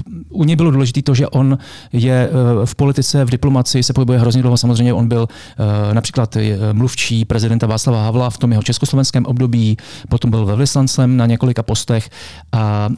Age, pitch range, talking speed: 40-59, 115-130 Hz, 170 wpm